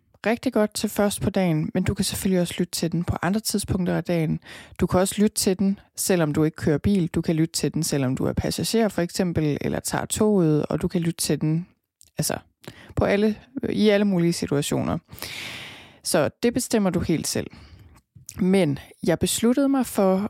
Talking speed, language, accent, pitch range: 200 wpm, Danish, native, 160-200 Hz